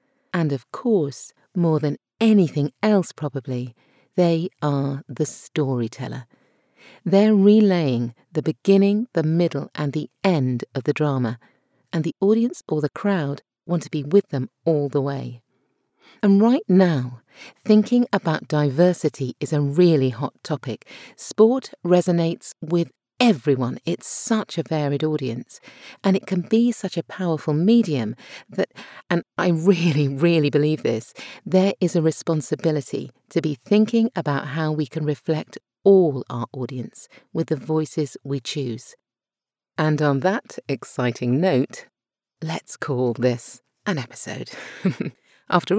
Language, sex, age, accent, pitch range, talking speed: English, female, 50-69, British, 140-185 Hz, 135 wpm